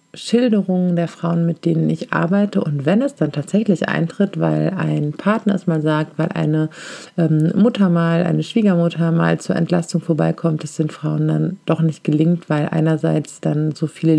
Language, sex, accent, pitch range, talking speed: German, female, German, 155-170 Hz, 175 wpm